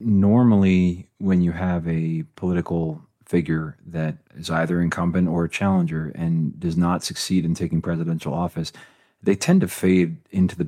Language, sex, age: English, male, 30-49